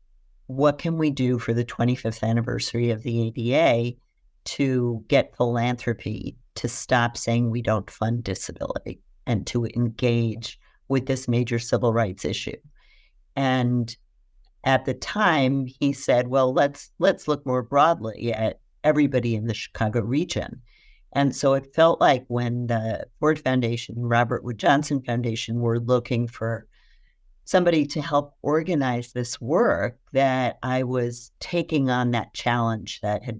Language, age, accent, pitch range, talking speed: English, 50-69, American, 115-135 Hz, 140 wpm